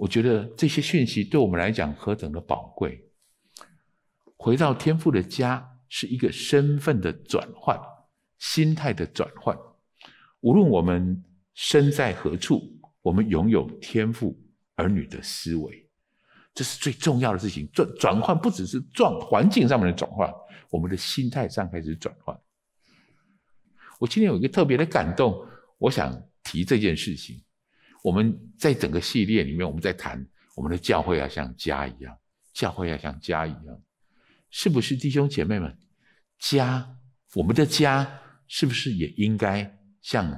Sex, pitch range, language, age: male, 85-140 Hz, Chinese, 50-69